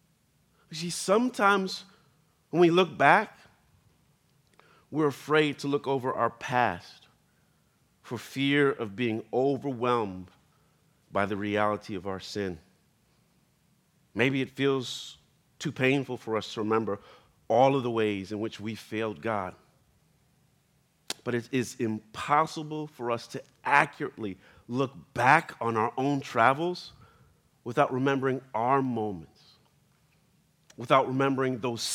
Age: 40-59